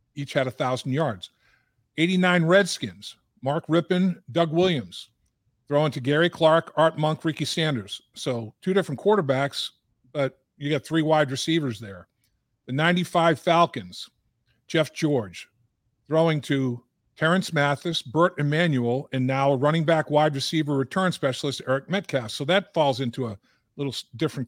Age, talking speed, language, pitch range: 50-69, 140 wpm, English, 130-165 Hz